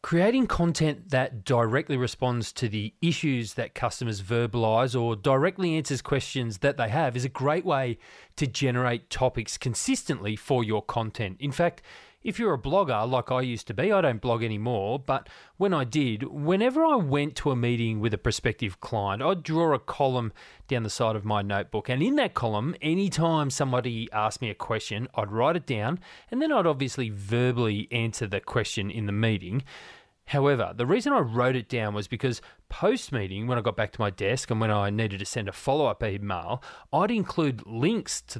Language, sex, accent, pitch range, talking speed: English, male, Australian, 115-150 Hz, 190 wpm